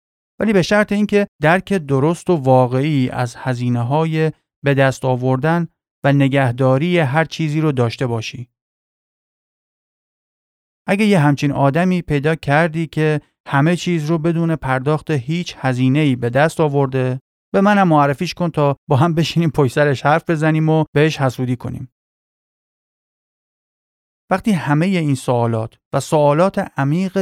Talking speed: 135 wpm